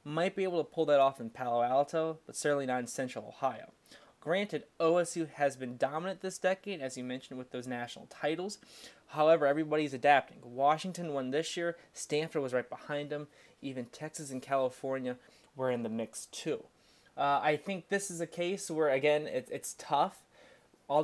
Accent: American